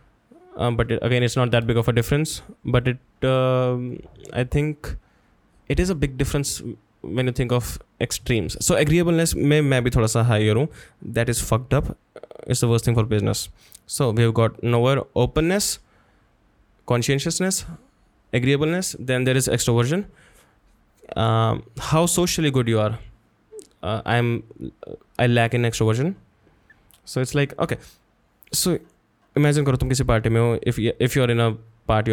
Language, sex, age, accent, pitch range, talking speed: English, male, 20-39, Indian, 115-145 Hz, 145 wpm